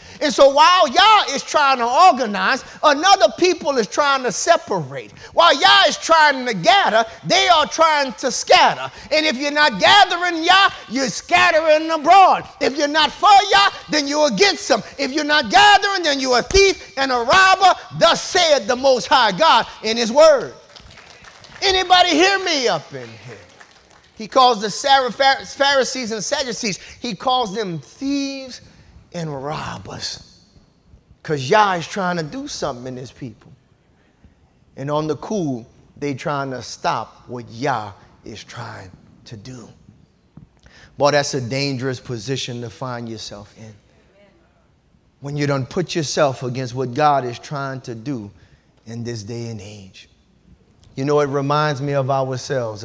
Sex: male